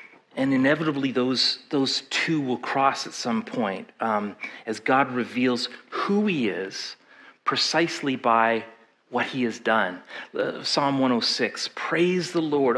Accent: American